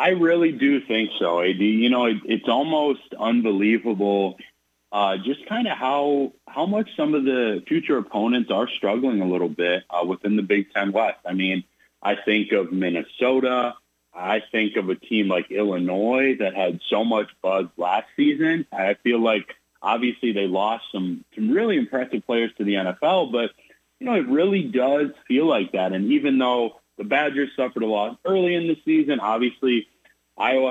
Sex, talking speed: male, 180 wpm